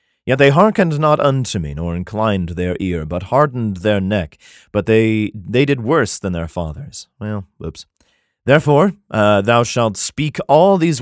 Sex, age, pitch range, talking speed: male, 30-49, 90-125 Hz, 170 wpm